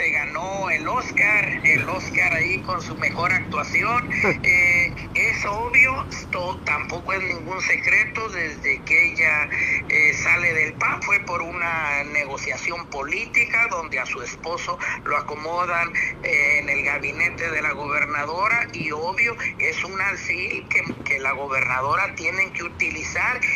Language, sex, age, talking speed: Spanish, male, 50-69, 145 wpm